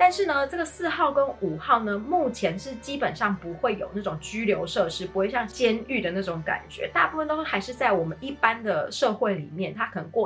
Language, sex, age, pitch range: Chinese, female, 30-49, 185-250 Hz